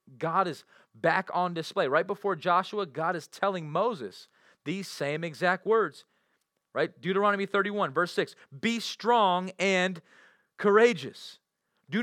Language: English